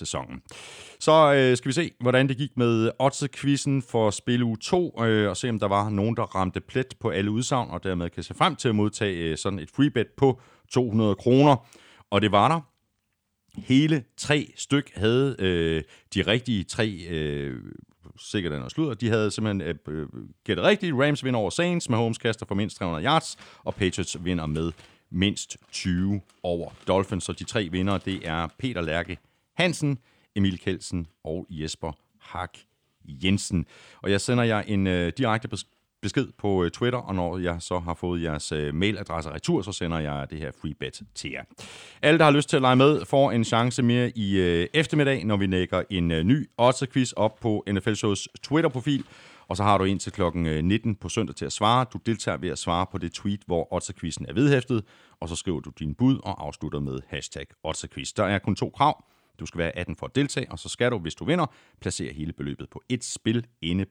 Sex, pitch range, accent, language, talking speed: male, 85-125 Hz, native, Danish, 205 wpm